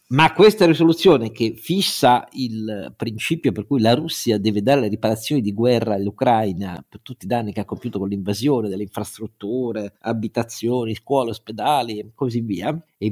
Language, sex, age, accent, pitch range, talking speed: Italian, male, 50-69, native, 105-145 Hz, 170 wpm